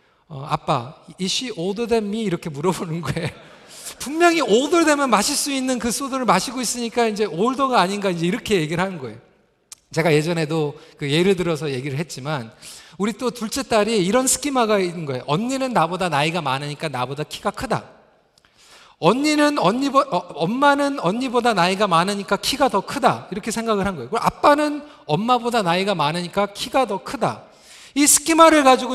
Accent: native